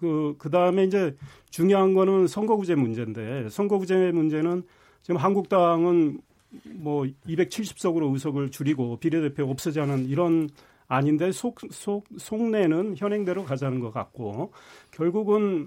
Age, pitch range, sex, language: 40-59, 140-185 Hz, male, Korean